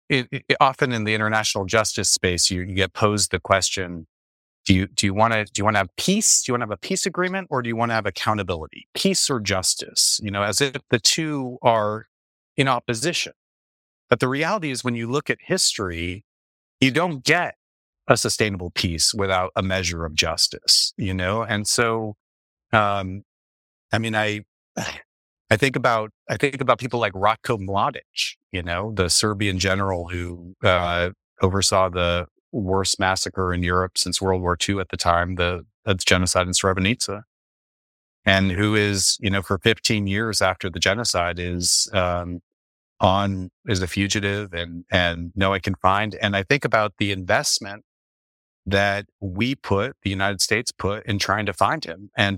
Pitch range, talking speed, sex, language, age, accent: 90-115 Hz, 180 wpm, male, English, 30-49, American